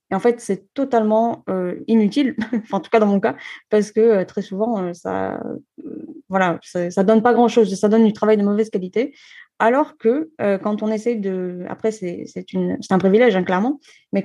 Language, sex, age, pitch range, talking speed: French, female, 20-39, 190-225 Hz, 210 wpm